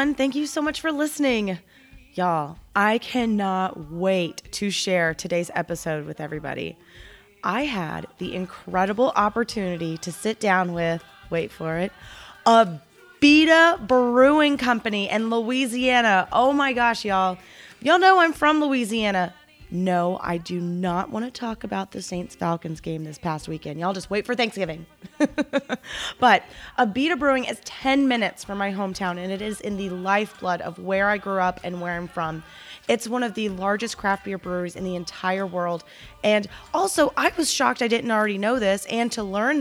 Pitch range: 180-250 Hz